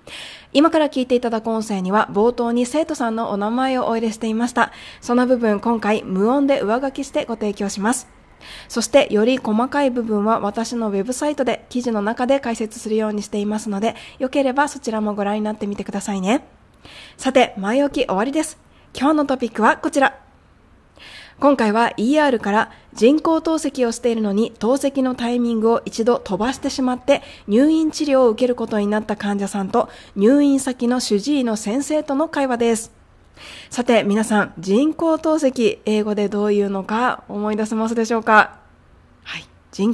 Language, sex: Japanese, female